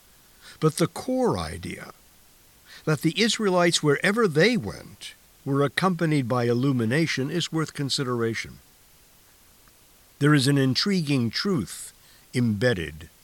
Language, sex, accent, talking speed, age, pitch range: English, male, American, 105 wpm, 60-79, 105-155 Hz